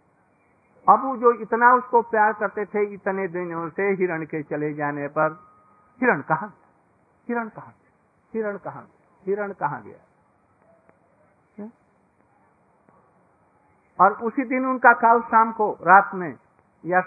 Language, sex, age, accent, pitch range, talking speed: Hindi, male, 50-69, native, 185-230 Hz, 125 wpm